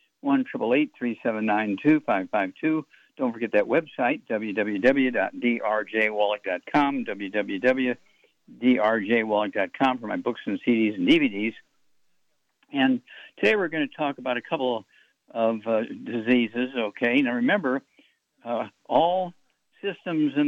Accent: American